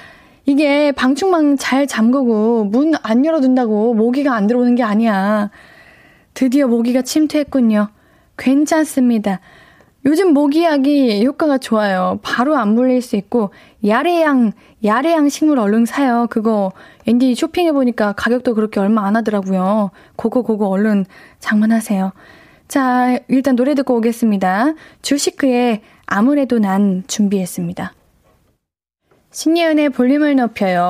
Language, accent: Korean, native